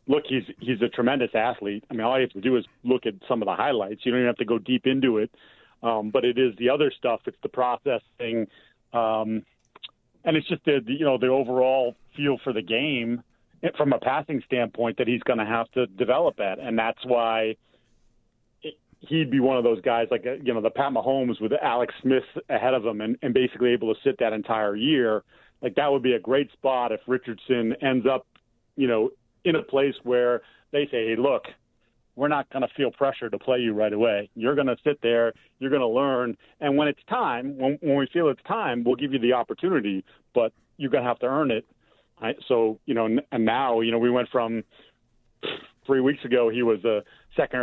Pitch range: 115-130 Hz